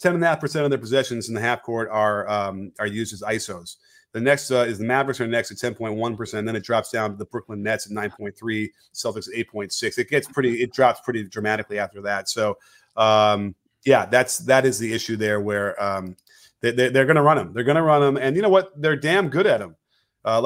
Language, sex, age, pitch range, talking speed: English, male, 30-49, 110-135 Hz, 230 wpm